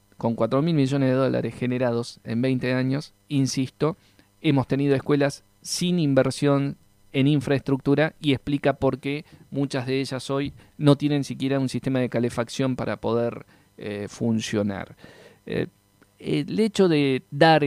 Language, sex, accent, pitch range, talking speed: Spanish, male, Argentinian, 120-145 Hz, 140 wpm